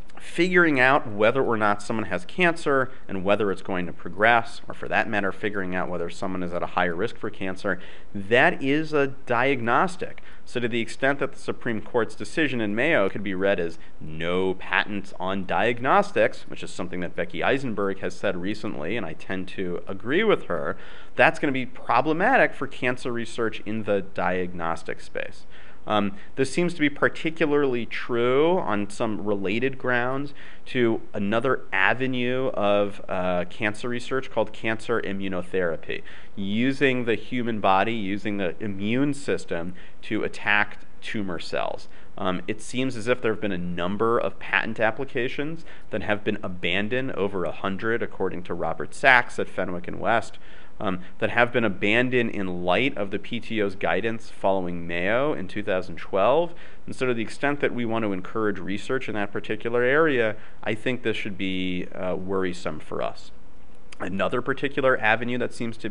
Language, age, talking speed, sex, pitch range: English, 30-49, 170 wpm, male, 95-125 Hz